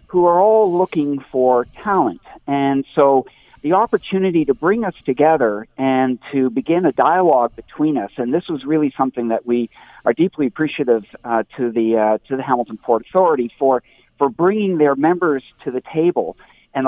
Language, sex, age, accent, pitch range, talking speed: English, male, 50-69, American, 120-160 Hz, 175 wpm